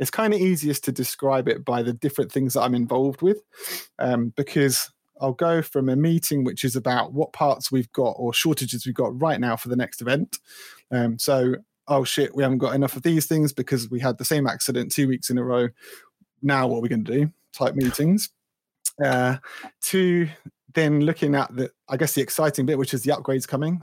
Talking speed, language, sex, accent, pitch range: 215 wpm, English, male, British, 125-150 Hz